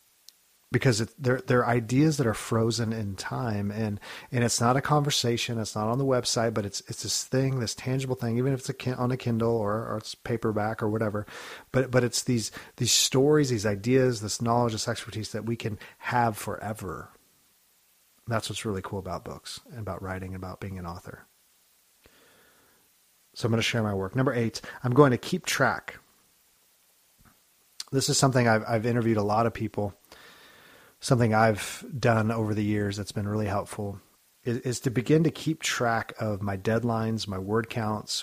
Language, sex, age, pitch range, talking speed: English, male, 40-59, 105-120 Hz, 190 wpm